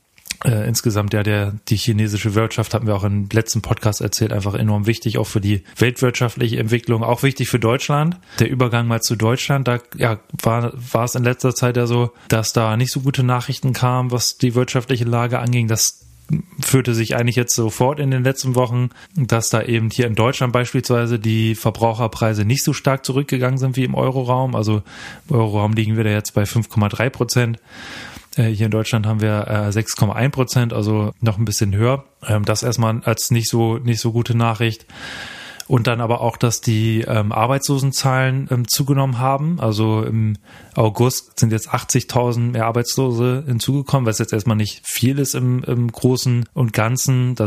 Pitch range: 110-125 Hz